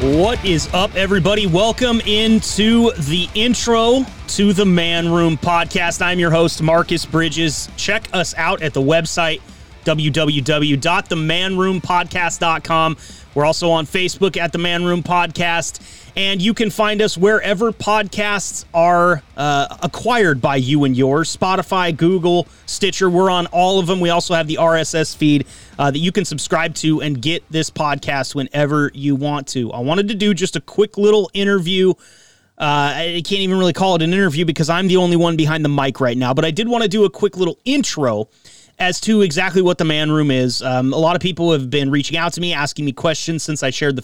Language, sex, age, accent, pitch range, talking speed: English, male, 30-49, American, 145-185 Hz, 190 wpm